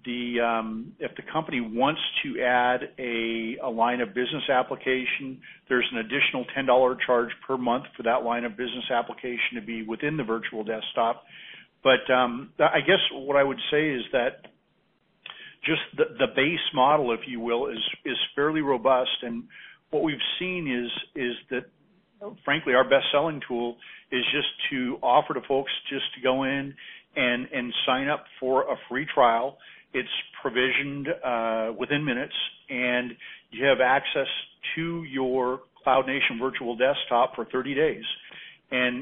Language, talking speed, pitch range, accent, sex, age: English, 160 wpm, 120-140 Hz, American, male, 50-69